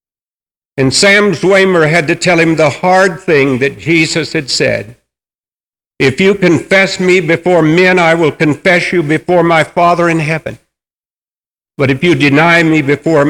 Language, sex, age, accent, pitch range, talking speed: English, male, 60-79, American, 140-175 Hz, 160 wpm